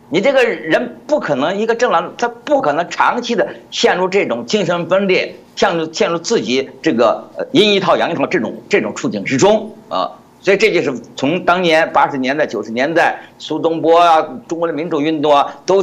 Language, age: Chinese, 50-69